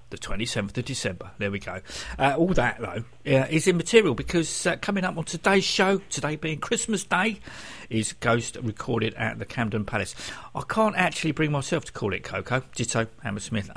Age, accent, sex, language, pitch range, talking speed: 50-69, British, male, English, 115-165 Hz, 190 wpm